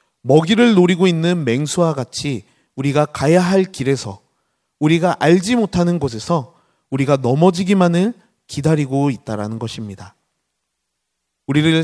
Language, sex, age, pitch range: Korean, male, 30-49, 125-180 Hz